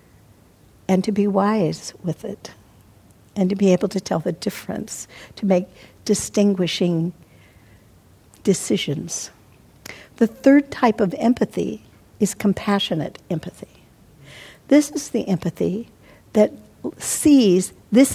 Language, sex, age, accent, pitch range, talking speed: English, female, 60-79, American, 165-215 Hz, 110 wpm